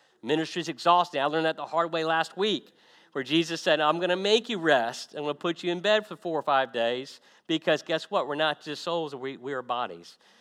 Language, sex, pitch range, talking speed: English, male, 135-170 Hz, 250 wpm